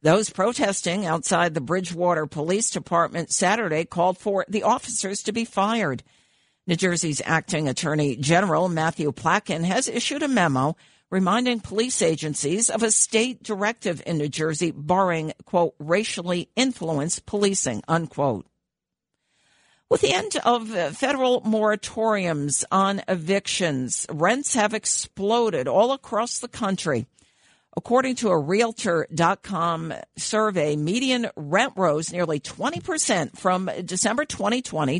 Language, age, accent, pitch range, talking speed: English, 50-69, American, 165-225 Hz, 120 wpm